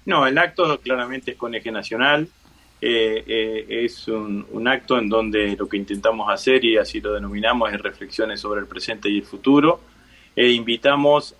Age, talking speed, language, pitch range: 30-49, 180 wpm, Spanish, 105-130 Hz